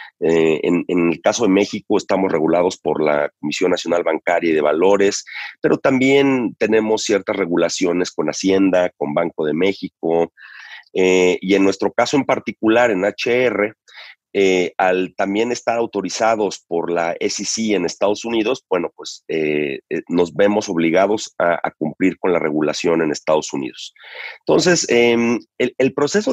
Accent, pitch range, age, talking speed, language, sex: Mexican, 90-115 Hz, 40-59, 155 wpm, Spanish, male